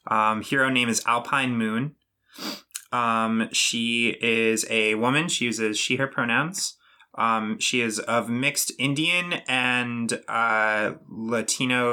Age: 20-39